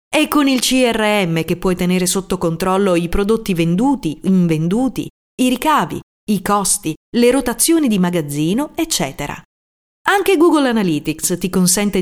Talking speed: 135 wpm